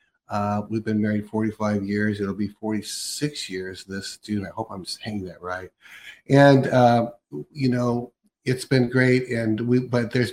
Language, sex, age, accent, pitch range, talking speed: English, male, 50-69, American, 105-125 Hz, 170 wpm